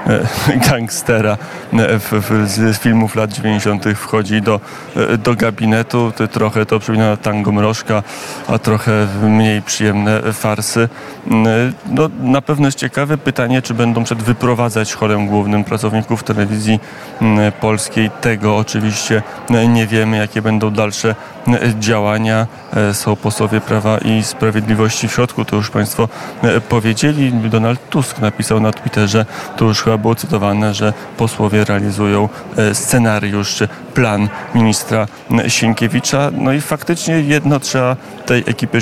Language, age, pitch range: Polish, 30-49, 105-120 Hz